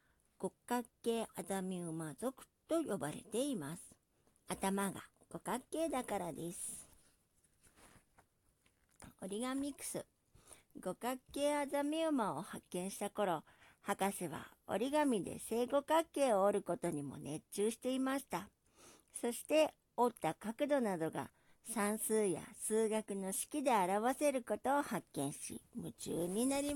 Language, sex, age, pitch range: Japanese, male, 60-79, 190-265 Hz